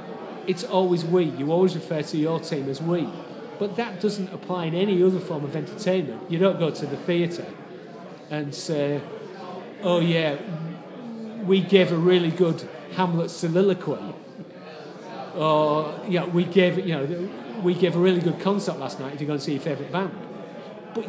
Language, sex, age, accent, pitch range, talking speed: English, male, 40-59, British, 155-190 Hz, 175 wpm